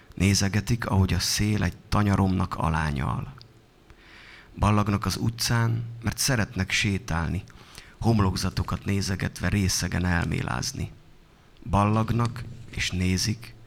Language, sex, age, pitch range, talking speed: Hungarian, male, 30-49, 95-115 Hz, 90 wpm